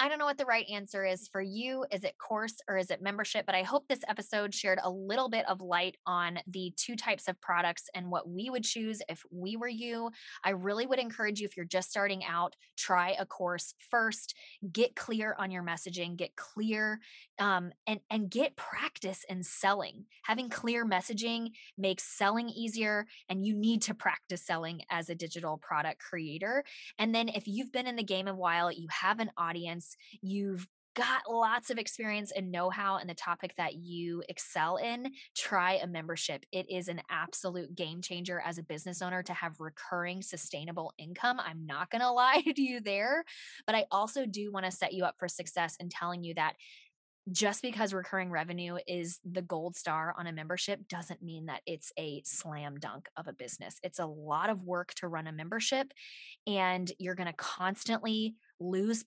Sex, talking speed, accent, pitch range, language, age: female, 195 wpm, American, 175-225 Hz, English, 20-39